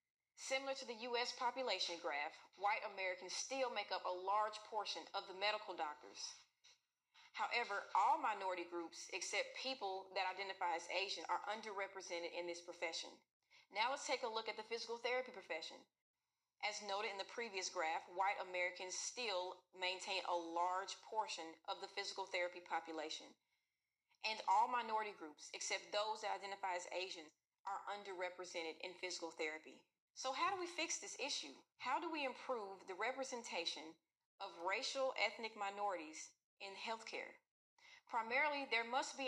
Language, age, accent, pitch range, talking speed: English, 30-49, American, 185-260 Hz, 150 wpm